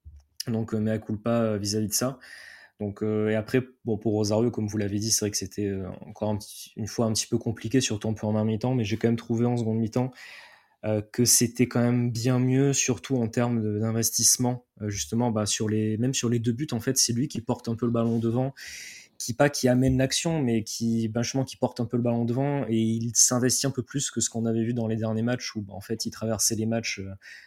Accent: French